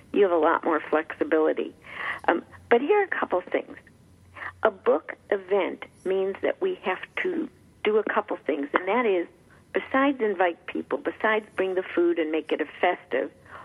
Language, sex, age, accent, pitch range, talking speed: English, female, 50-69, American, 165-235 Hz, 175 wpm